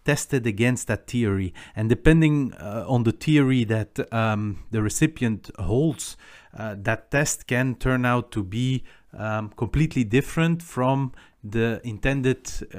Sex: male